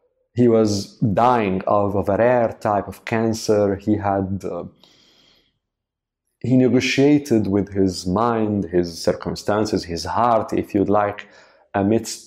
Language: Arabic